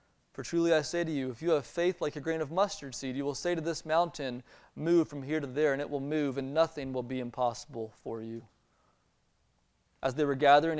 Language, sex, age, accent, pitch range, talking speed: English, male, 20-39, American, 115-155 Hz, 235 wpm